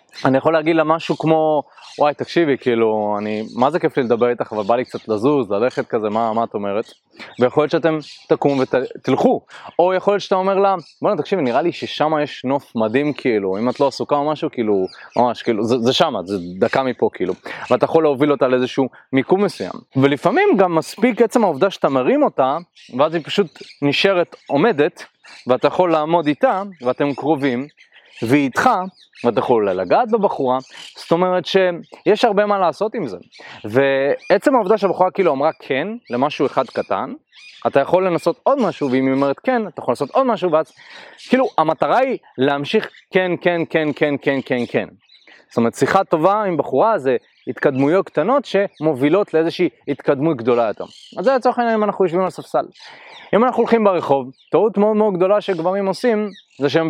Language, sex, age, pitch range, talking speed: Hebrew, male, 30-49, 140-195 Hz, 185 wpm